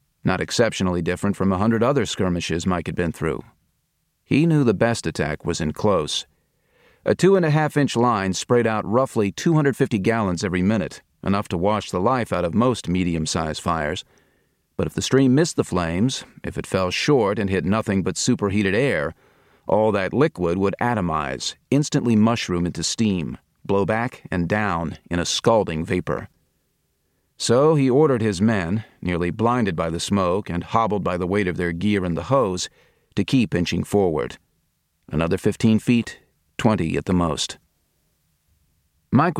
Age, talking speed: 40-59, 165 wpm